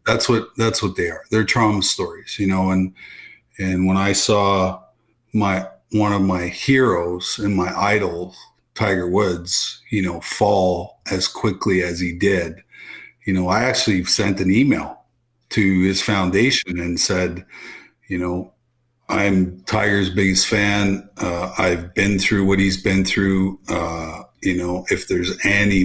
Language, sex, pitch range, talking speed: English, male, 90-110 Hz, 155 wpm